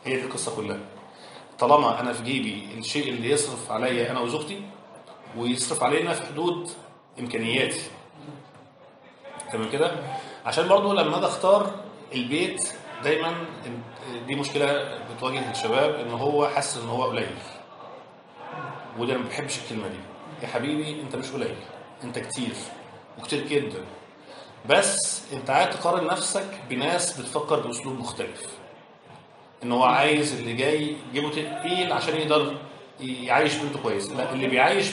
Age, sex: 40-59, male